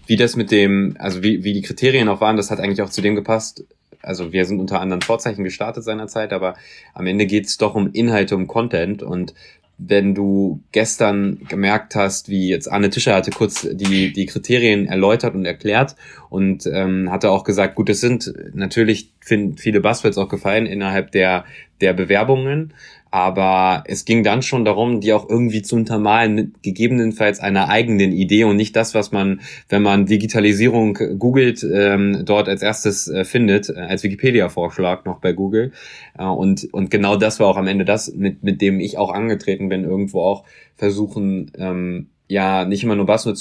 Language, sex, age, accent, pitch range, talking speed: German, male, 20-39, German, 95-110 Hz, 185 wpm